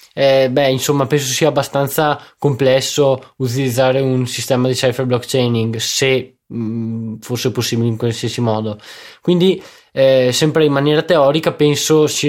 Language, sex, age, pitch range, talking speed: Italian, male, 20-39, 125-150 Hz, 135 wpm